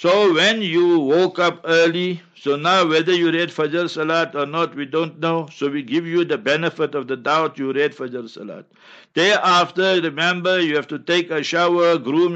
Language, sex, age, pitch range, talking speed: English, male, 60-79, 145-175 Hz, 195 wpm